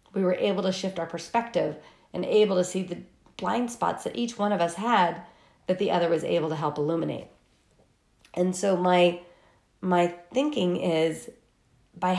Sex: female